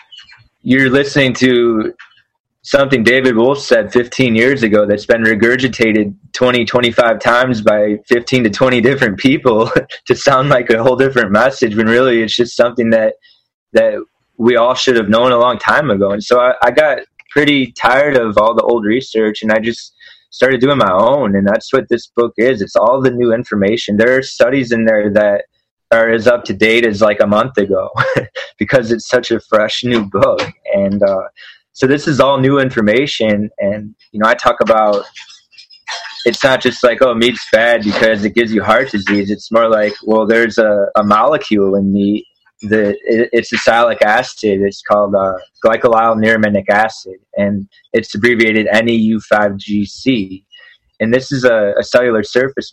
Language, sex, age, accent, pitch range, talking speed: English, male, 20-39, American, 105-125 Hz, 180 wpm